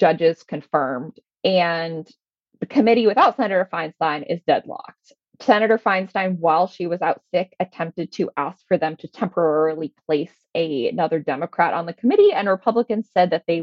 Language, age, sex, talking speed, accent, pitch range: English, 20-39, female, 155 wpm, American, 165-215 Hz